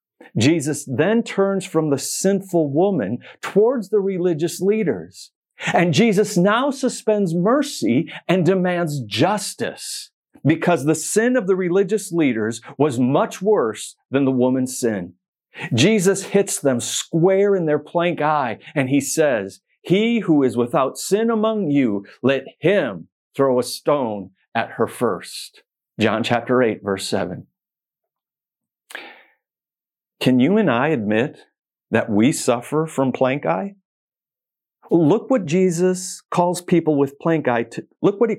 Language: English